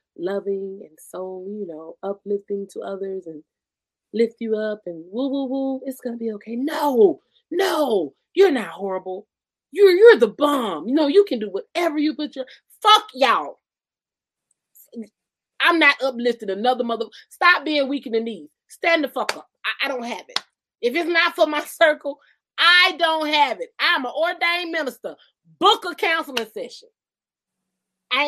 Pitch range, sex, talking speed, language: 220-315 Hz, female, 170 wpm, English